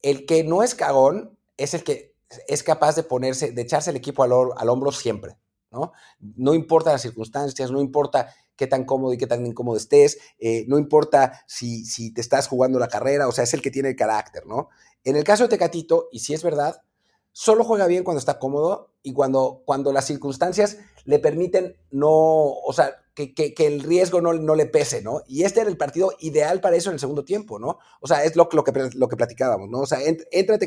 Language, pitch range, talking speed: Spanish, 135-195 Hz, 215 wpm